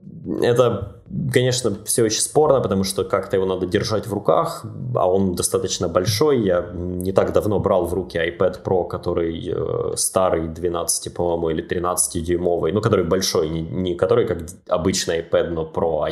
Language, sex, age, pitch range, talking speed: Russian, male, 20-39, 90-120 Hz, 170 wpm